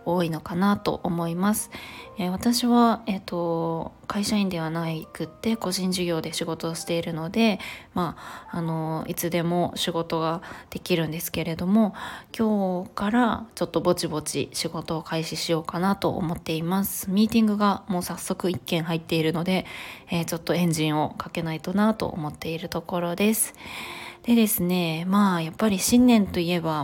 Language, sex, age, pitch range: Japanese, female, 20-39, 170-210 Hz